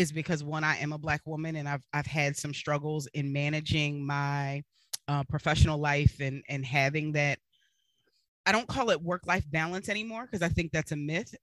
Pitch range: 145-170 Hz